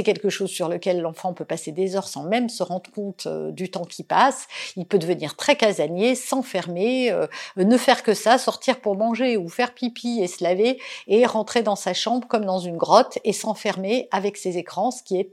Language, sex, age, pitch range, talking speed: French, female, 50-69, 190-265 Hz, 215 wpm